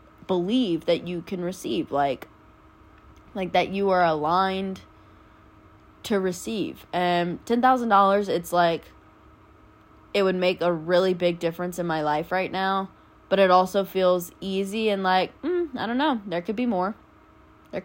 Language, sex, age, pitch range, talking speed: English, female, 20-39, 170-200 Hz, 150 wpm